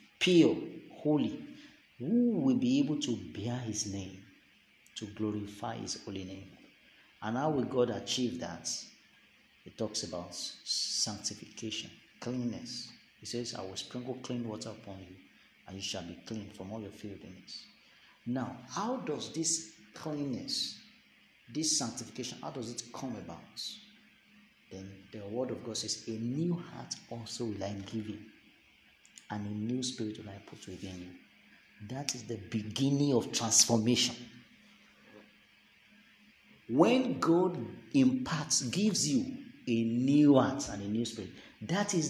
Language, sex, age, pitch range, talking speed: English, male, 50-69, 110-155 Hz, 140 wpm